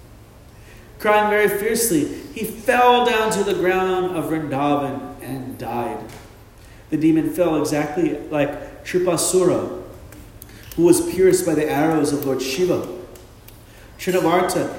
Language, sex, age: English, male, 40-59